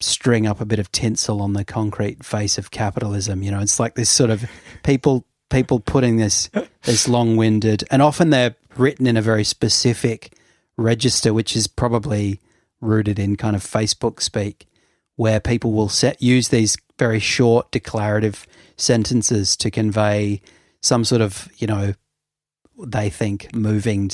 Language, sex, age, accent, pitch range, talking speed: English, male, 30-49, Australian, 105-125 Hz, 155 wpm